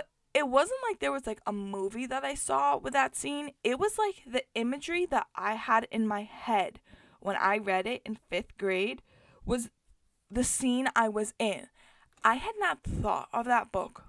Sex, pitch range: female, 205-275 Hz